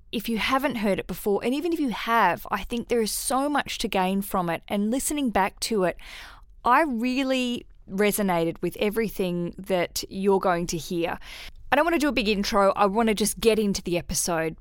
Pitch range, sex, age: 190-235 Hz, female, 20-39